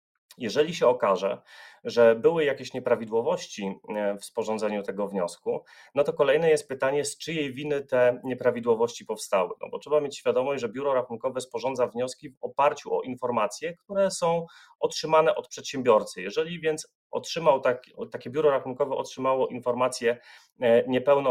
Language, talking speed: Polish, 145 wpm